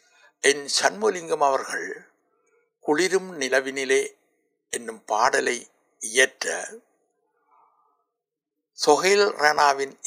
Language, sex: Tamil, male